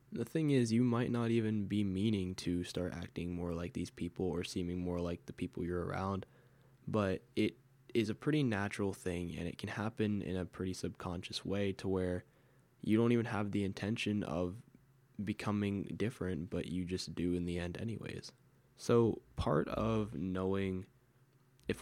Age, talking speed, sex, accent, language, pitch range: 10-29, 175 wpm, male, American, English, 90-115 Hz